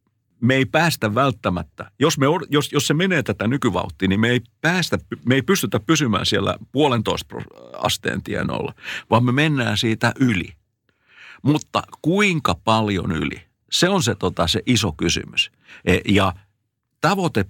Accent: native